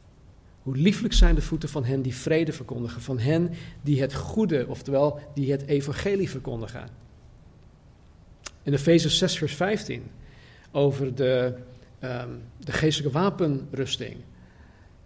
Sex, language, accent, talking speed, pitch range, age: male, Dutch, Dutch, 130 wpm, 130-160 Hz, 50-69